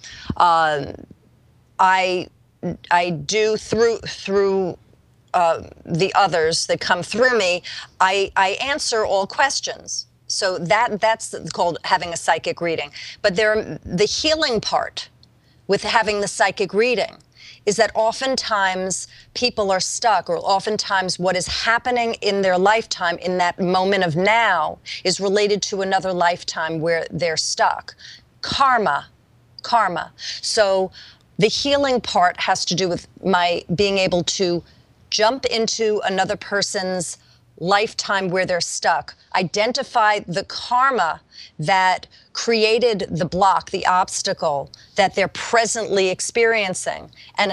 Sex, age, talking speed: female, 40-59, 125 wpm